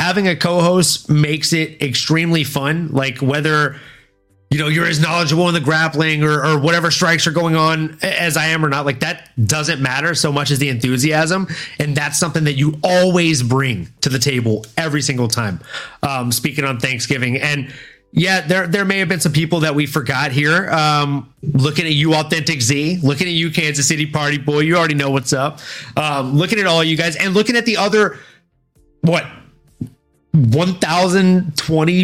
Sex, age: male, 30-49